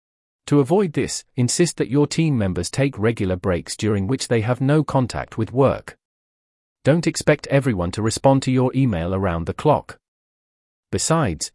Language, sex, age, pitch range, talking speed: English, male, 40-59, 95-140 Hz, 160 wpm